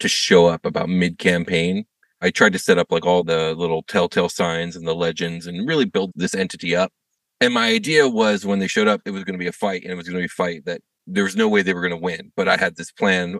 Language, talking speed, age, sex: English, 280 wpm, 30-49, male